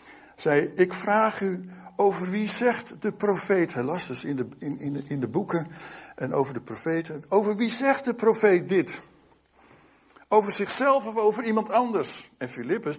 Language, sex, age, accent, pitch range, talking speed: Dutch, male, 60-79, Dutch, 150-225 Hz, 175 wpm